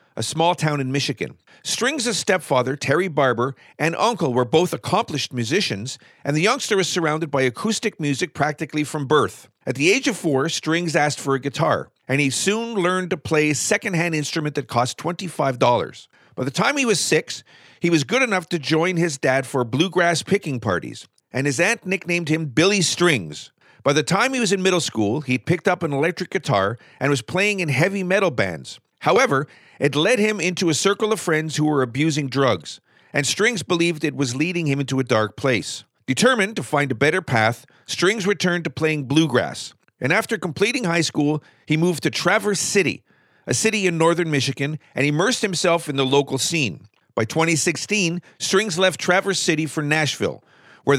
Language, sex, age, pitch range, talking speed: English, male, 50-69, 135-185 Hz, 190 wpm